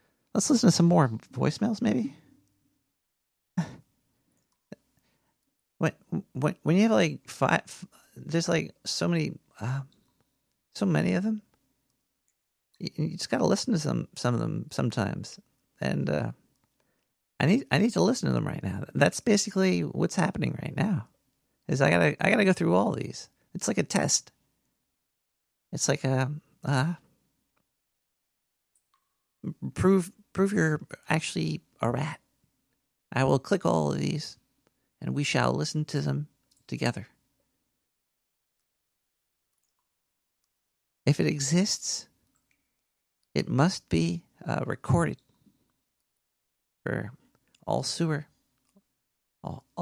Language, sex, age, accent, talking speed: English, male, 40-59, American, 120 wpm